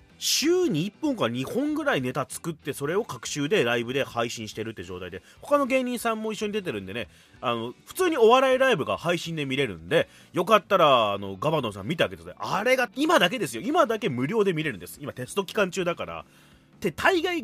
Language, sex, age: Japanese, male, 30-49